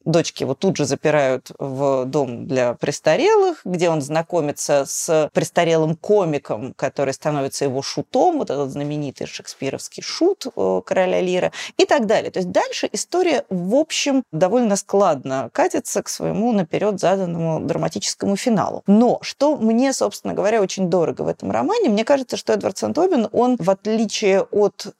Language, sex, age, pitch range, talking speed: Russian, female, 30-49, 165-235 Hz, 150 wpm